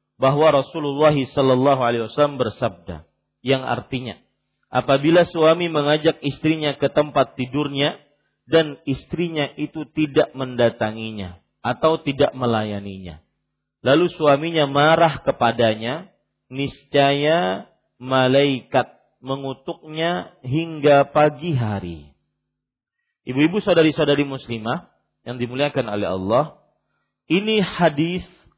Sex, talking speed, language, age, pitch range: male, 85 wpm, Malay, 40-59, 130-160 Hz